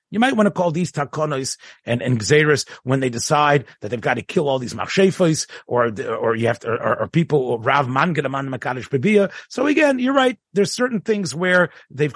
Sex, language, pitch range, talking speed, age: male, English, 135-195 Hz, 200 wpm, 40-59